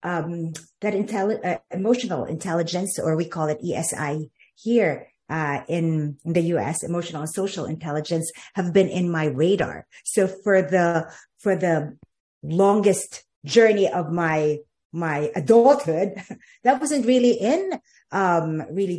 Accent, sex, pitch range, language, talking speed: Filipino, female, 165-210 Hz, English, 135 wpm